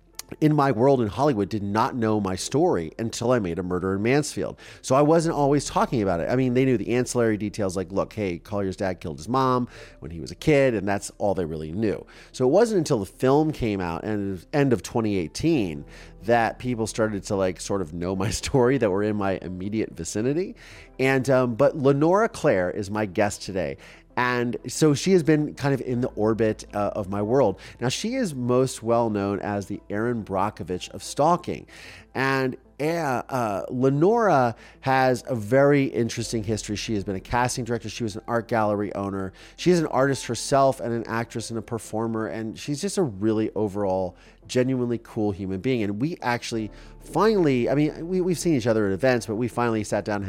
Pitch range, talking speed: 100-130 Hz, 205 wpm